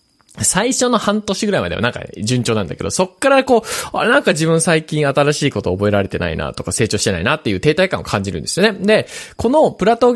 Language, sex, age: Japanese, male, 20-39